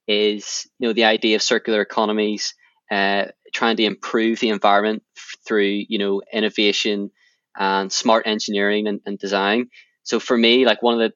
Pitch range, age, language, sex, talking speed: 105-115 Hz, 20-39, English, male, 165 wpm